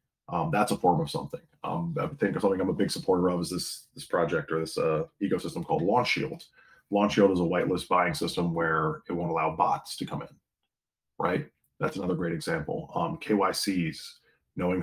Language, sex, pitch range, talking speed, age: English, male, 85-145 Hz, 200 wpm, 30-49